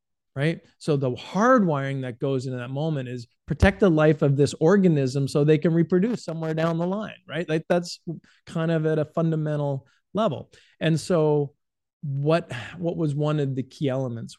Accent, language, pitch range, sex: American, English, 125-155 Hz, male